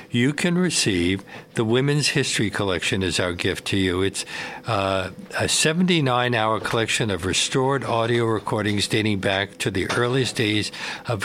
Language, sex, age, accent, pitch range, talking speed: English, male, 60-79, American, 95-120 Hz, 150 wpm